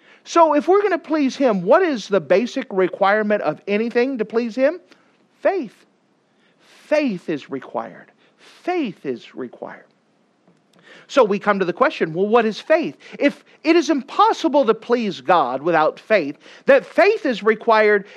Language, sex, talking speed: English, male, 155 wpm